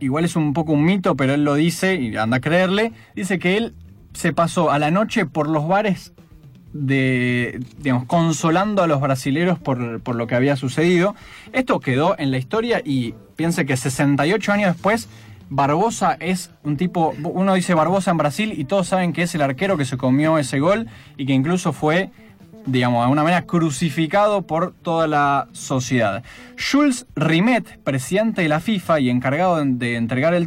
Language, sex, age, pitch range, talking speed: Spanish, male, 20-39, 145-200 Hz, 185 wpm